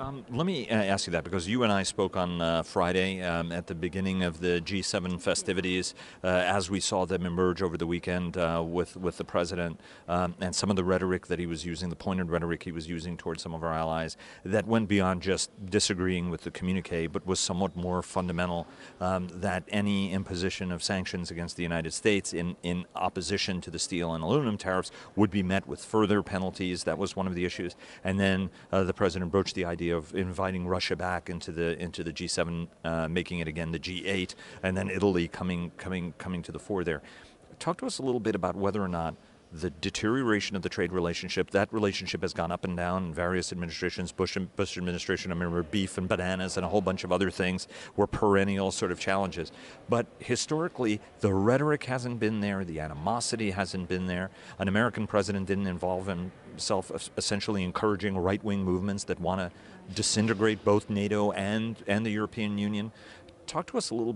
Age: 40-59